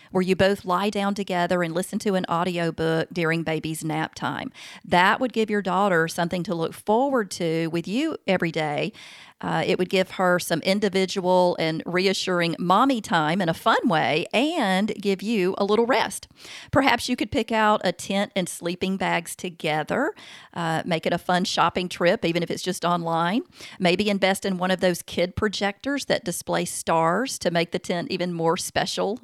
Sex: female